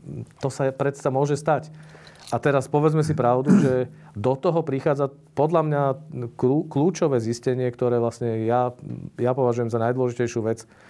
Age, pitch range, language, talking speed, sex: 40-59, 110-135 Hz, Slovak, 145 wpm, male